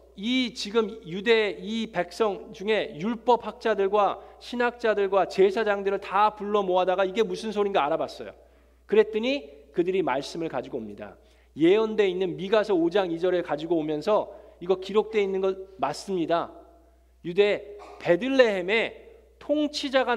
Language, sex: Korean, male